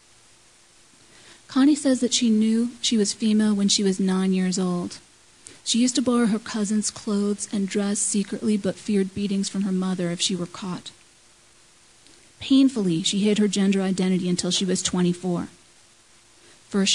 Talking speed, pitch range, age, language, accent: 160 wpm, 180-215 Hz, 40-59, English, American